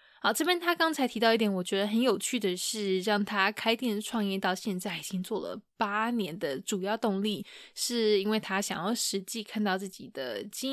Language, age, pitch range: Chinese, 20-39, 195-225 Hz